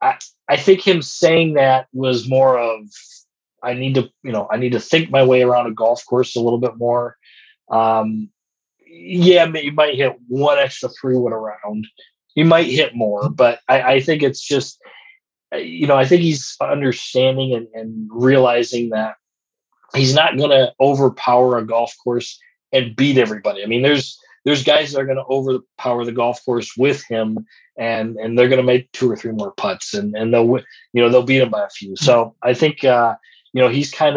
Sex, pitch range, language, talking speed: male, 120-140 Hz, English, 200 wpm